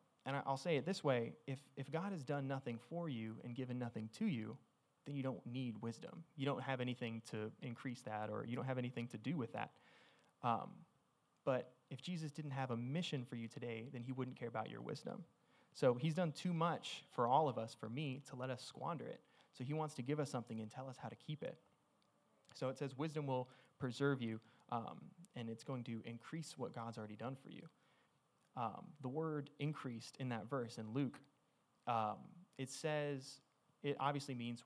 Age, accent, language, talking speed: 20-39, American, English, 210 wpm